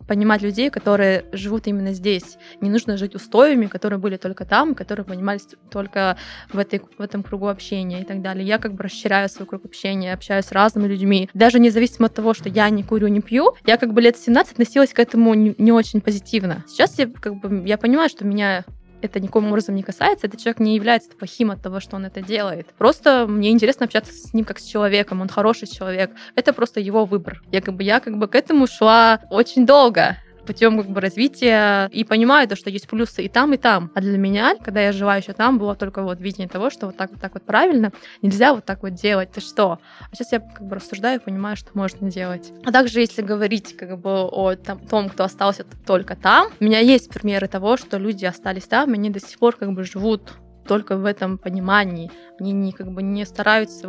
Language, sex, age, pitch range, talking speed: Russian, female, 20-39, 195-225 Hz, 220 wpm